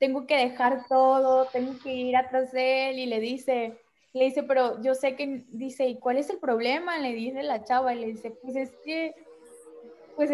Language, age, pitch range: Spanish, 10-29, 235-275 Hz